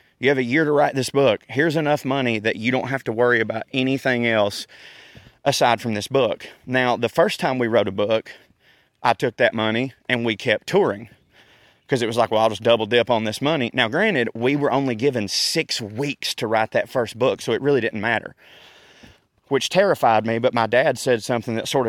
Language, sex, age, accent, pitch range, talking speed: English, male, 30-49, American, 110-130 Hz, 220 wpm